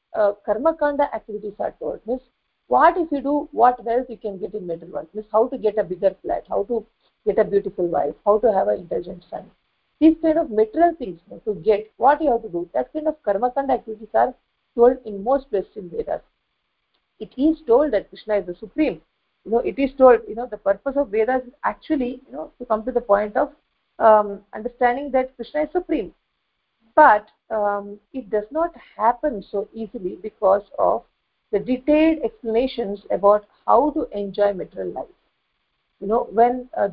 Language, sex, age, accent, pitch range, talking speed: English, female, 50-69, Indian, 205-280 Hz, 195 wpm